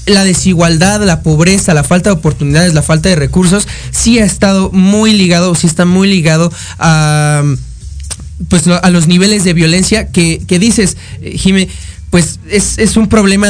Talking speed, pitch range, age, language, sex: 165 wpm, 155-200 Hz, 20-39, Spanish, male